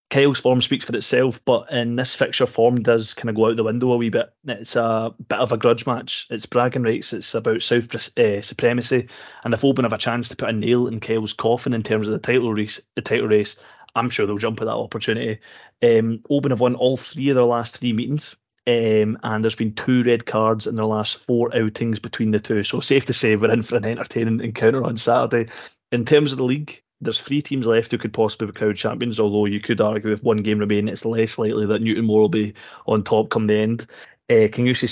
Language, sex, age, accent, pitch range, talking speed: English, male, 20-39, British, 110-120 Hz, 240 wpm